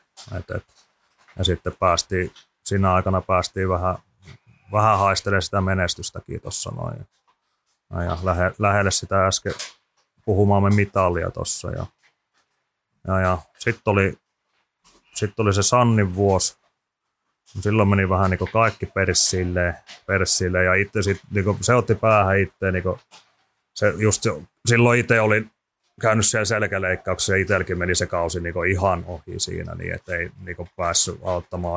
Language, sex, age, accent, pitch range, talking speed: Finnish, male, 30-49, native, 90-100 Hz, 125 wpm